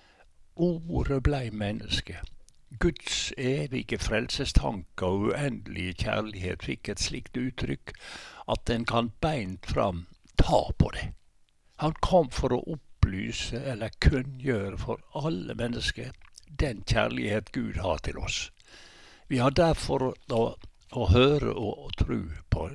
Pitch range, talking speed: 95-130 Hz, 120 wpm